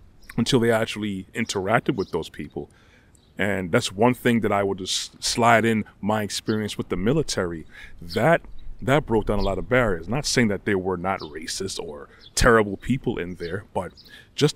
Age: 30-49